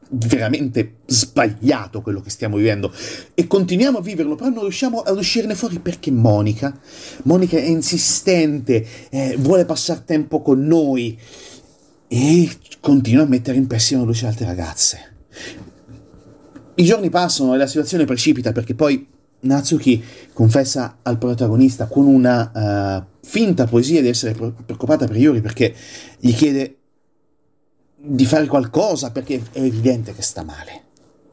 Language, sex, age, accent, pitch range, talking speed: Italian, male, 30-49, native, 105-150 Hz, 135 wpm